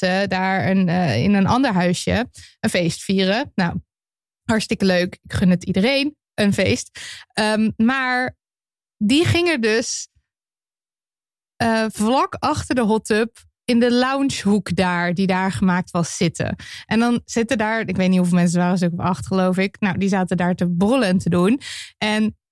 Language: Dutch